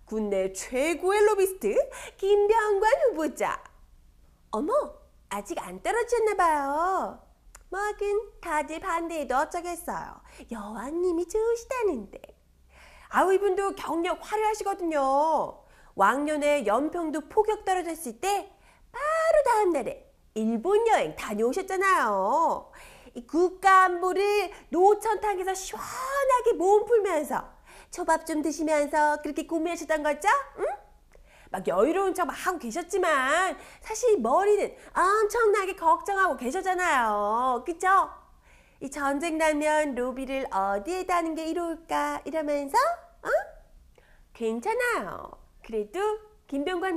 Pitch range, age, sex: 300-400 Hz, 30-49, female